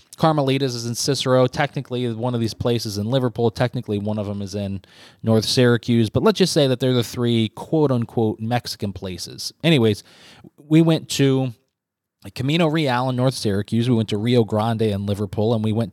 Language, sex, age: English, male, 20-39